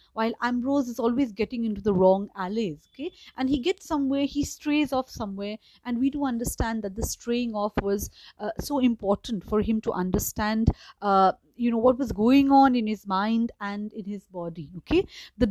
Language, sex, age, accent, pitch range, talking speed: English, female, 30-49, Indian, 205-255 Hz, 195 wpm